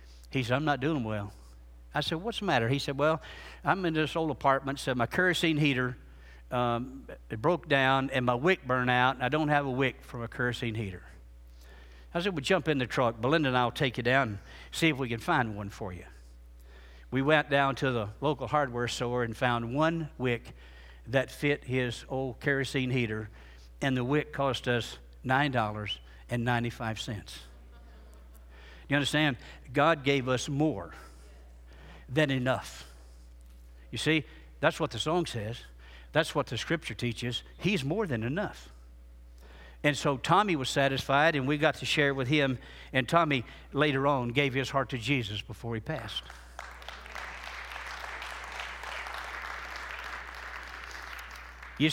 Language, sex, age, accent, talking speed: English, male, 60-79, American, 160 wpm